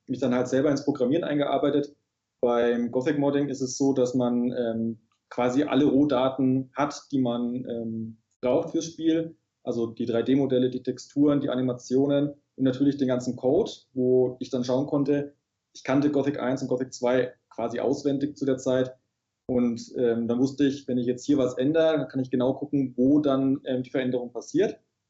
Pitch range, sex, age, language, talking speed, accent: 115-135 Hz, male, 20-39, German, 180 wpm, German